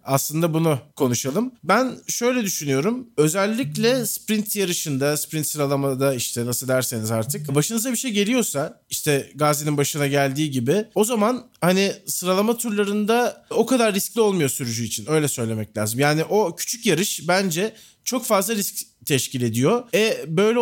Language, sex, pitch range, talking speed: Turkish, male, 145-205 Hz, 145 wpm